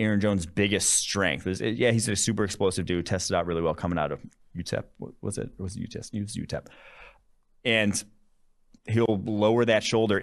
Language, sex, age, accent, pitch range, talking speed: English, male, 30-49, American, 90-110 Hz, 190 wpm